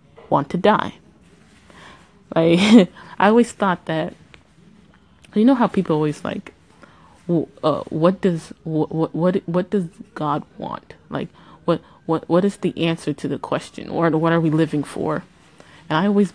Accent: American